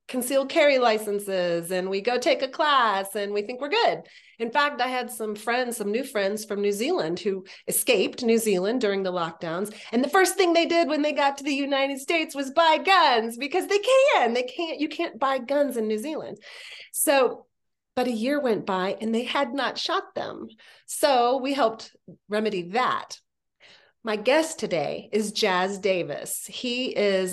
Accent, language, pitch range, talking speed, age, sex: American, English, 190-275 Hz, 190 wpm, 30-49, female